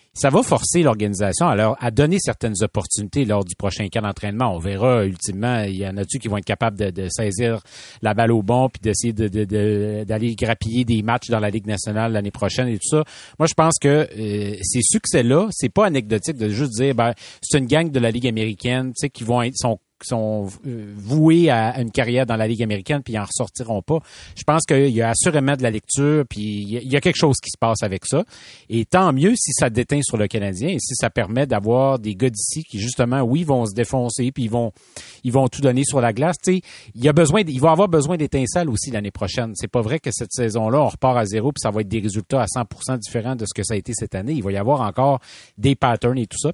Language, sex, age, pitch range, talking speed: French, male, 30-49, 110-140 Hz, 250 wpm